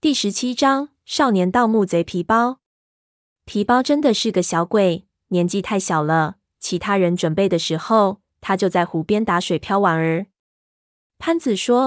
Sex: female